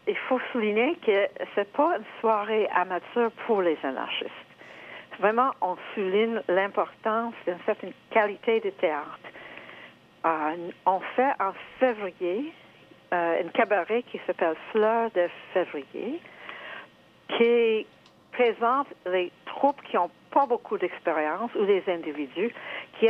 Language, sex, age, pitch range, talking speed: English, female, 60-79, 180-240 Hz, 125 wpm